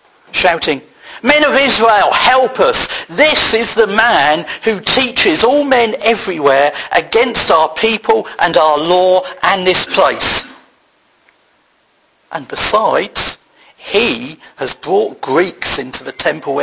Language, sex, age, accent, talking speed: English, male, 50-69, British, 120 wpm